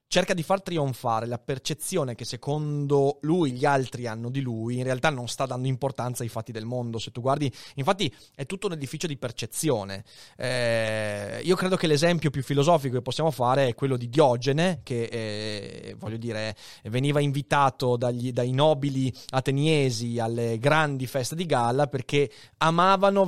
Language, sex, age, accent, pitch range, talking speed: Italian, male, 30-49, native, 125-165 Hz, 175 wpm